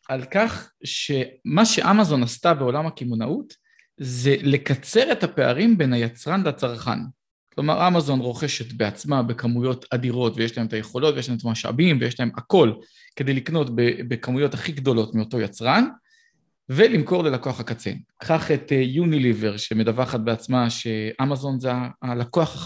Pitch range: 120-155 Hz